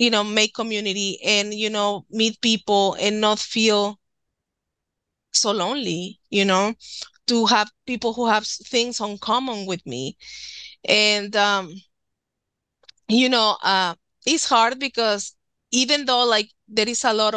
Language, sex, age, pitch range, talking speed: English, female, 20-39, 205-245 Hz, 140 wpm